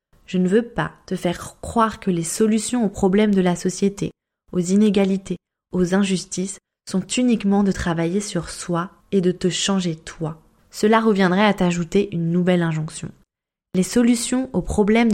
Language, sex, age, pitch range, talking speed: French, female, 20-39, 180-215 Hz, 165 wpm